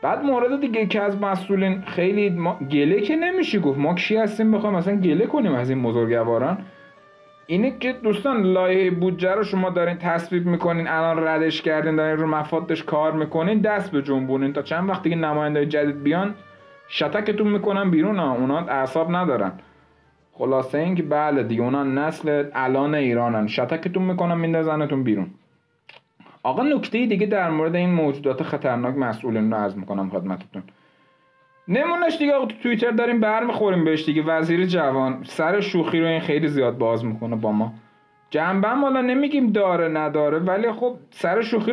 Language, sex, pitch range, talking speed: Persian, male, 140-195 Hz, 165 wpm